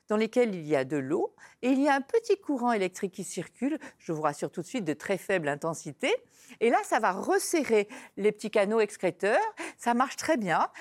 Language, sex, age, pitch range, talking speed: French, female, 50-69, 200-295 Hz, 220 wpm